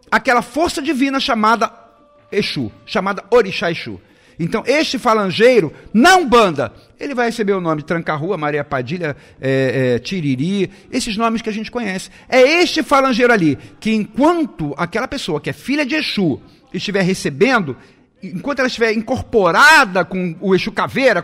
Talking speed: 145 wpm